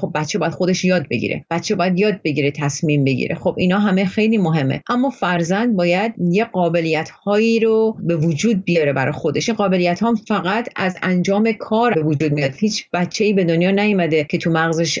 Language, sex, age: Persian, female, 40-59